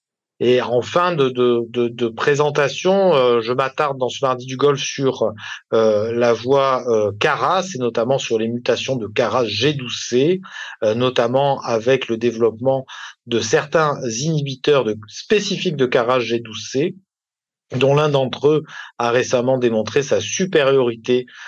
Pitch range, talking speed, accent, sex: 120-160 Hz, 155 wpm, French, male